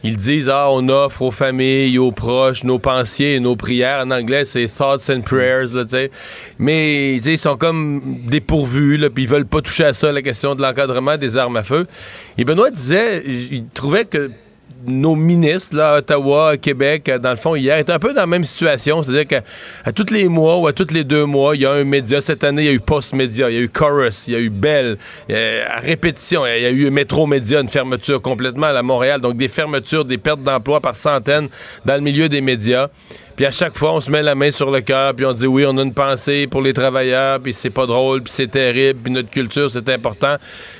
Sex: male